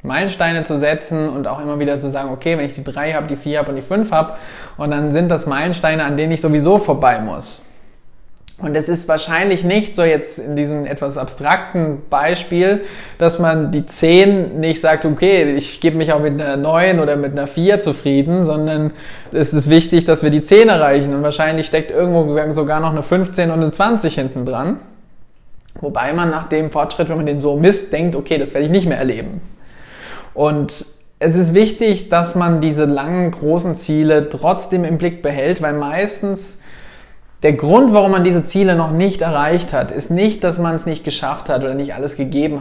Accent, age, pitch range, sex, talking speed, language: German, 20-39, 145-175 Hz, male, 205 wpm, German